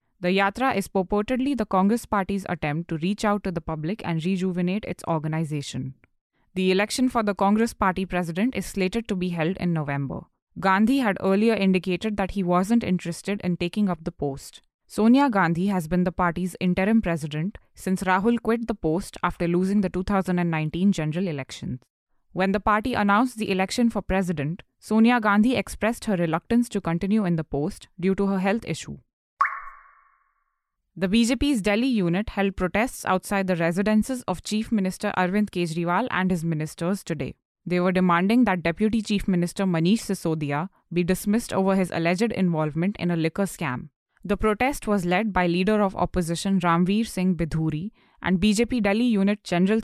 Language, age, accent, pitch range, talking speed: English, 20-39, Indian, 175-210 Hz, 170 wpm